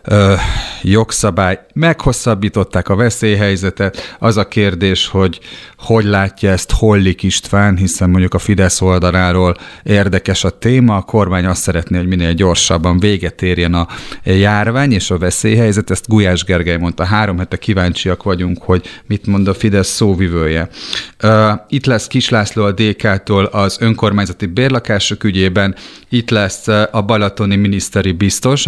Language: Hungarian